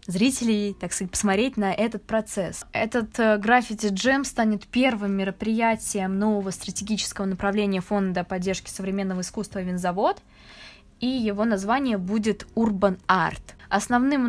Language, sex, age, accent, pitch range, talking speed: Russian, female, 20-39, native, 195-225 Hz, 115 wpm